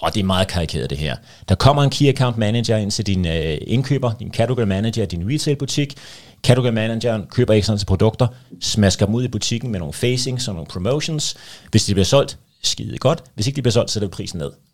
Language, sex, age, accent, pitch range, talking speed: Danish, male, 30-49, native, 105-140 Hz, 230 wpm